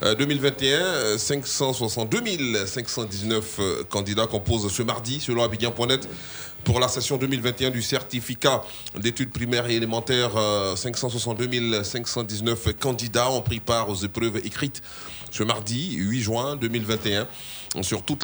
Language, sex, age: French, male, 30-49